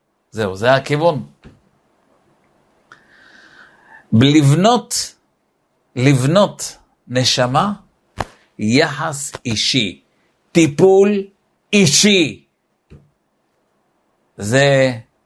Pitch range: 125-195 Hz